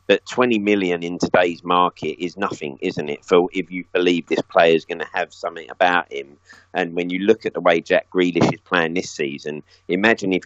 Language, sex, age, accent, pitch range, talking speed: English, male, 30-49, British, 85-95 Hz, 220 wpm